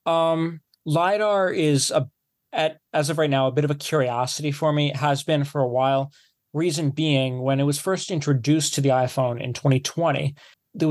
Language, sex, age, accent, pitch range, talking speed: English, male, 20-39, American, 135-155 Hz, 195 wpm